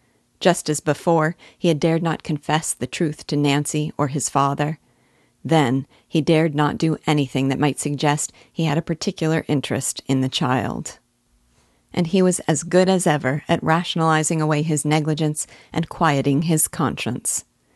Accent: American